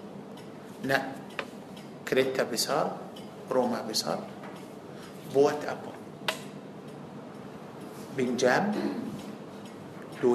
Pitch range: 195-220 Hz